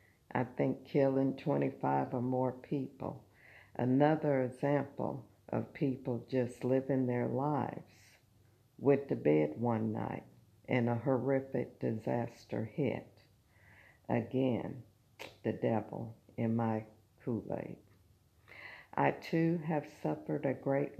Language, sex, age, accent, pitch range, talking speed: English, female, 60-79, American, 105-135 Hz, 105 wpm